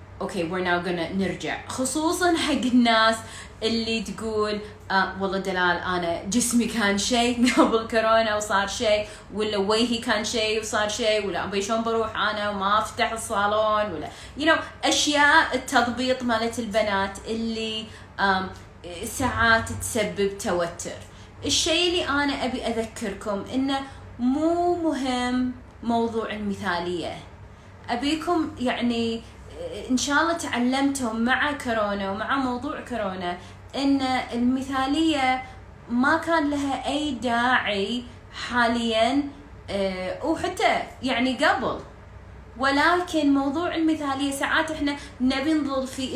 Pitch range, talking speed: 215-280 Hz, 110 wpm